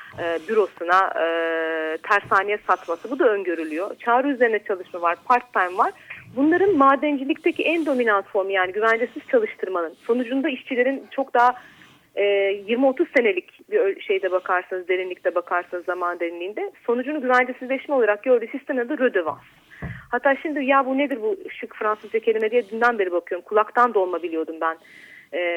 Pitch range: 195-300 Hz